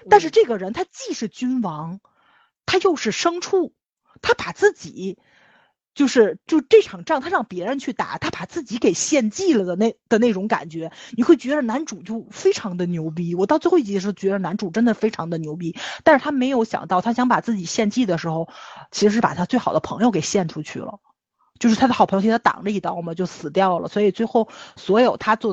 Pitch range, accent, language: 185-270 Hz, native, Chinese